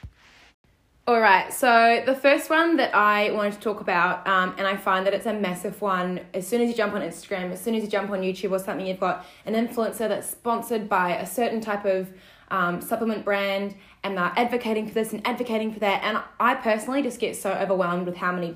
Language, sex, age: English, female, 10-29